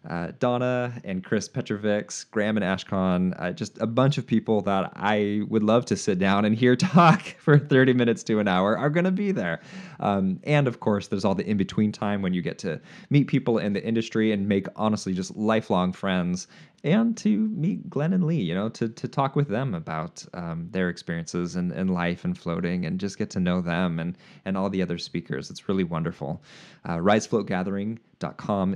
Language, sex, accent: English, male, American